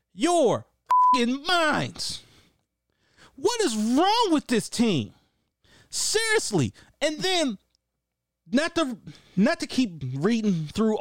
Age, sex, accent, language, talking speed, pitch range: 30-49, male, American, English, 105 wpm, 130-210 Hz